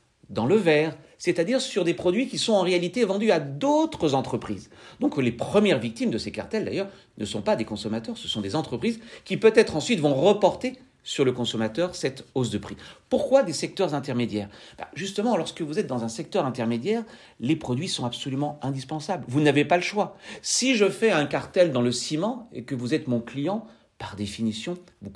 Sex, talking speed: male, 200 wpm